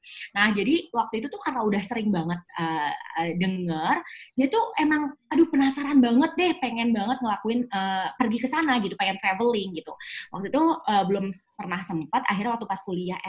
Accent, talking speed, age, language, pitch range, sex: native, 185 wpm, 20-39, Indonesian, 175-245 Hz, female